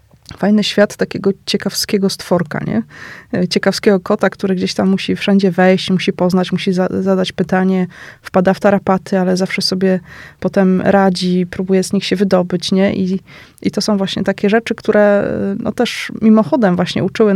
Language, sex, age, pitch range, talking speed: Polish, female, 20-39, 185-205 Hz, 160 wpm